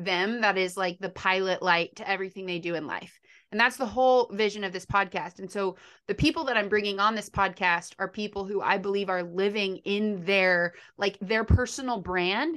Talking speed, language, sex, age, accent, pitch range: 210 wpm, English, female, 30-49, American, 190-230 Hz